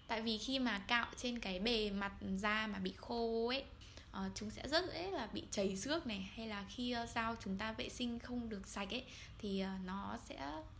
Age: 10-29